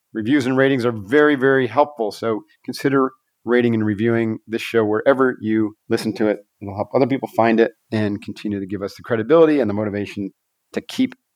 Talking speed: 195 wpm